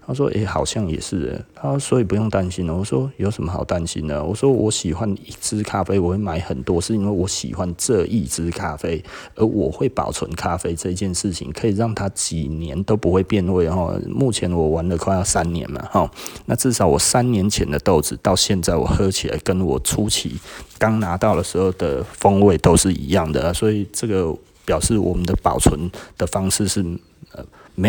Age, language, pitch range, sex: 30-49, Chinese, 90-115 Hz, male